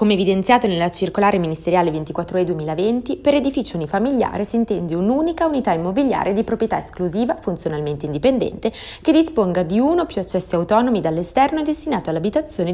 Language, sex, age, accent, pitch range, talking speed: Italian, female, 20-39, native, 165-230 Hz, 155 wpm